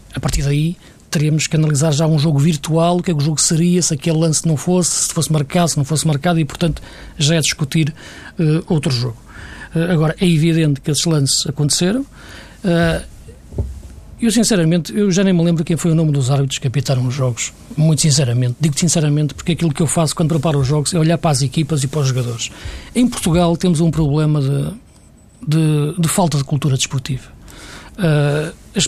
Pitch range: 150-180 Hz